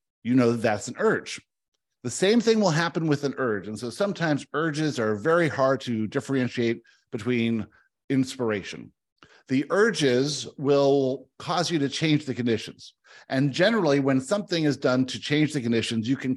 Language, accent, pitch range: English, American, 125-155 Hz